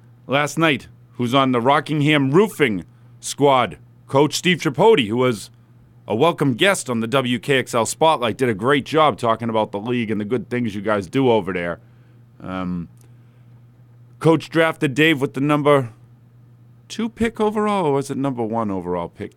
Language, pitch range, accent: English, 120-145 Hz, American